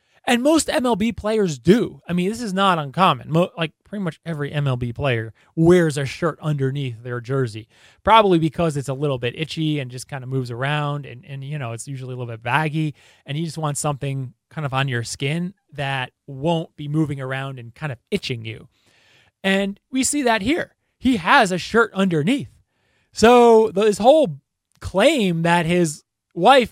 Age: 30-49